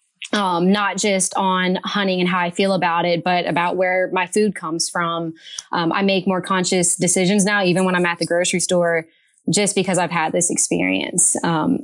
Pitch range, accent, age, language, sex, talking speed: 180-205 Hz, American, 20-39, English, female, 200 wpm